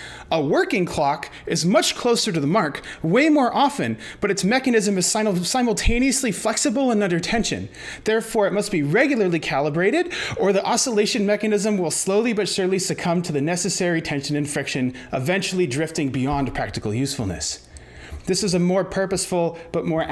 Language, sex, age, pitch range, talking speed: English, male, 30-49, 165-230 Hz, 160 wpm